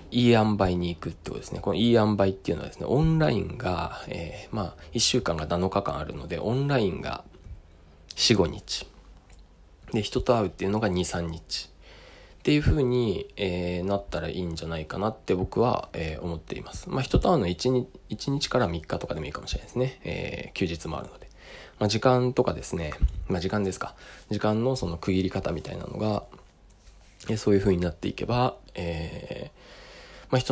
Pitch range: 85-105 Hz